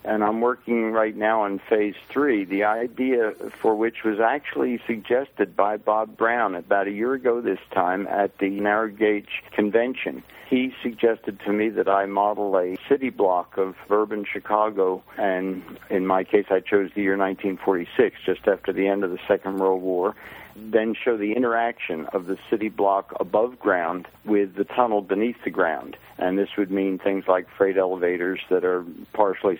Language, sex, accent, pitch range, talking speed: English, male, American, 95-110 Hz, 175 wpm